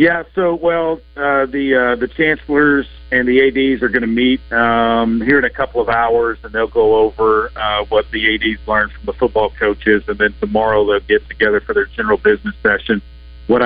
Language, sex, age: English, male, 50-69